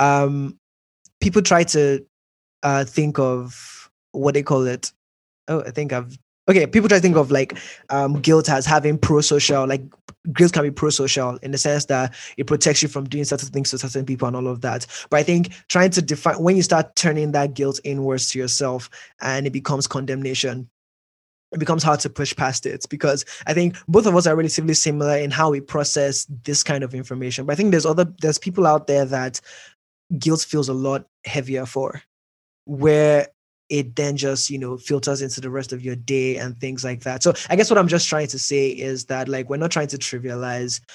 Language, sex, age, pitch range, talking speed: English, male, 20-39, 130-150 Hz, 210 wpm